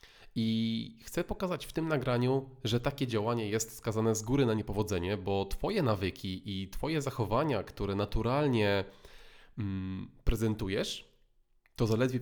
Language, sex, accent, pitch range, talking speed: Polish, male, native, 105-125 Hz, 135 wpm